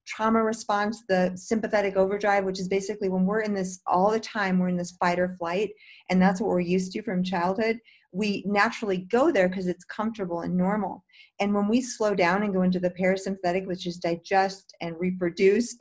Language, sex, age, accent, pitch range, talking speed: English, female, 40-59, American, 180-205 Hz, 200 wpm